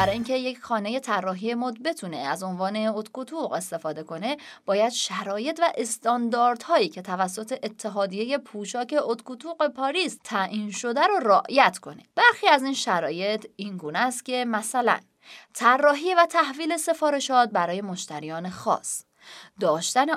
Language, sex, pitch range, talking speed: Persian, female, 210-295 Hz, 130 wpm